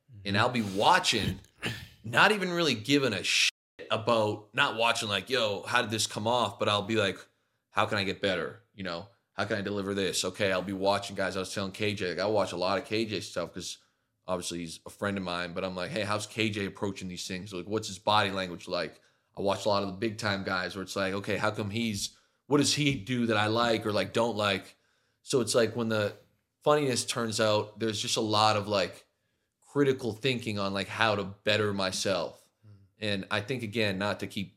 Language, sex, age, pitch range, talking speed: English, male, 20-39, 100-115 Hz, 225 wpm